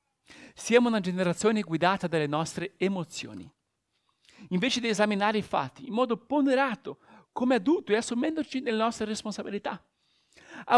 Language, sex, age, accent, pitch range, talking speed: Italian, male, 50-69, native, 185-245 Hz, 130 wpm